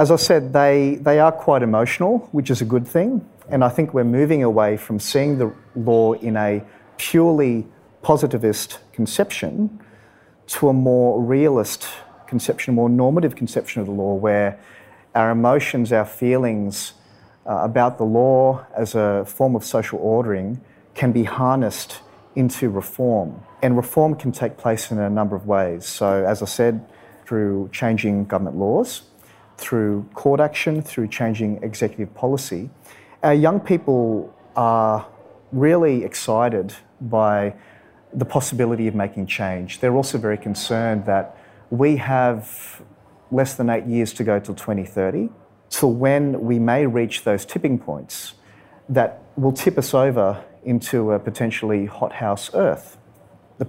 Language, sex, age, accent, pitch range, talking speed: English, male, 30-49, Australian, 105-130 Hz, 145 wpm